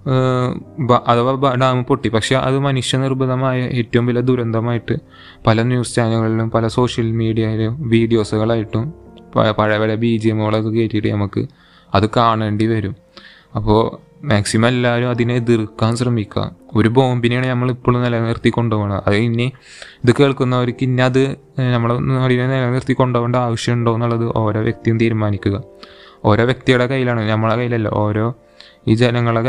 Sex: male